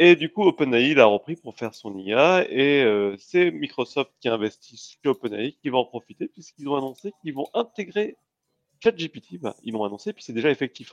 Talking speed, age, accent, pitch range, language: 205 wpm, 30-49, French, 115-160 Hz, French